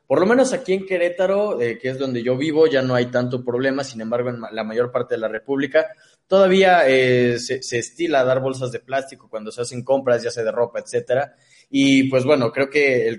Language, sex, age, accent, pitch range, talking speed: English, male, 20-39, Mexican, 115-140 Hz, 225 wpm